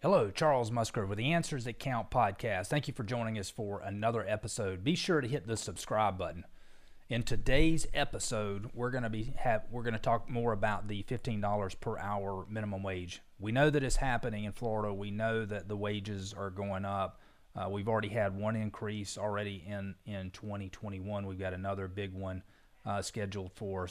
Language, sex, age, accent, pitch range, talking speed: English, male, 30-49, American, 100-115 Hz, 200 wpm